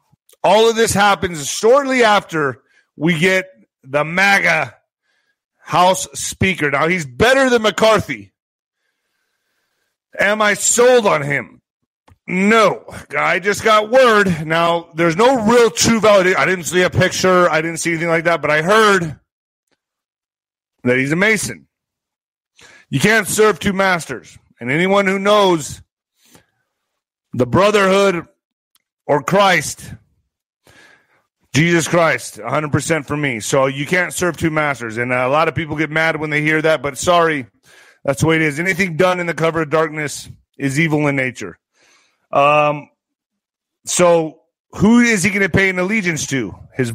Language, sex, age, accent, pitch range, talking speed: English, male, 40-59, American, 150-200 Hz, 150 wpm